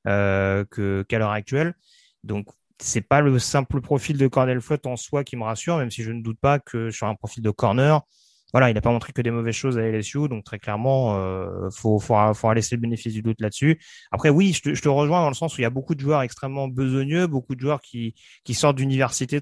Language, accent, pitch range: French, French, 115-140 Hz